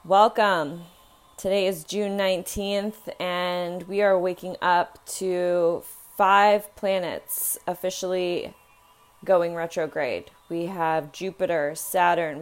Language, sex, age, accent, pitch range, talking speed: English, female, 20-39, American, 175-200 Hz, 95 wpm